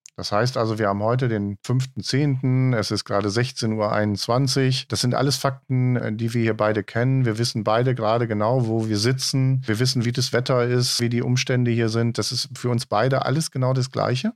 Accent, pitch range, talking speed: German, 110-140 Hz, 210 wpm